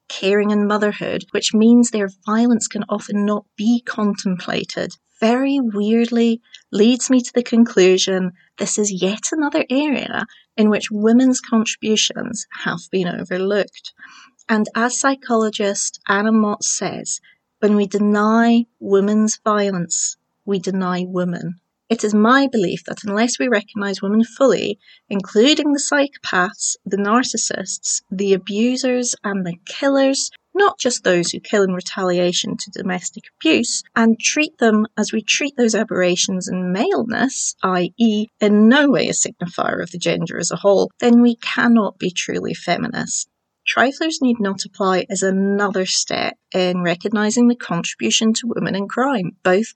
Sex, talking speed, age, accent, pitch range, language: female, 145 wpm, 30-49, British, 195-235 Hz, English